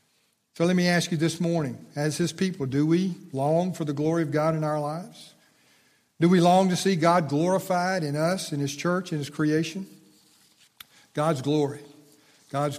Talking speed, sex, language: 185 wpm, male, English